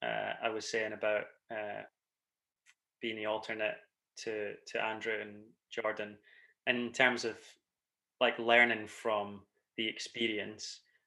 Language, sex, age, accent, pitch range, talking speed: English, male, 20-39, British, 110-125 Hz, 125 wpm